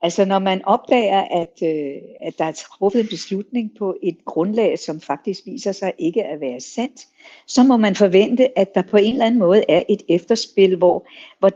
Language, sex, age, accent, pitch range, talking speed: Danish, female, 60-79, native, 180-230 Hz, 195 wpm